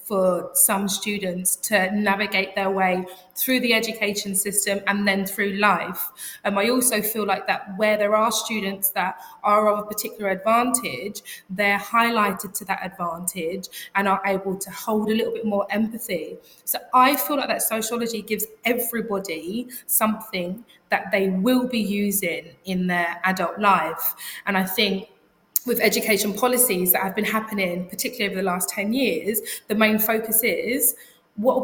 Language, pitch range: English, 195-230 Hz